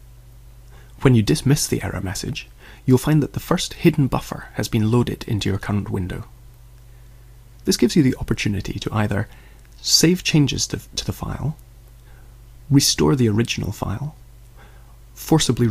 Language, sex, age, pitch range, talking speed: English, male, 30-49, 100-120 Hz, 140 wpm